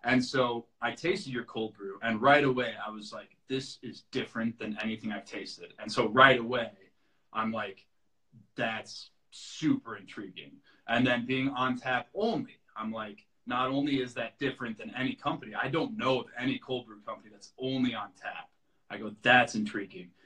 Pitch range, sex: 115-135 Hz, male